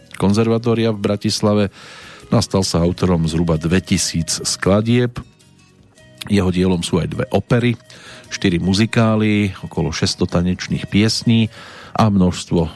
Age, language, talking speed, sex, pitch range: 40-59, Slovak, 110 wpm, male, 85-105 Hz